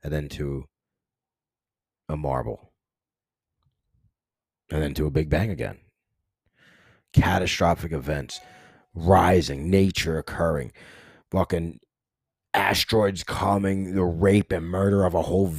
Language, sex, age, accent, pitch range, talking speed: English, male, 30-49, American, 80-100 Hz, 105 wpm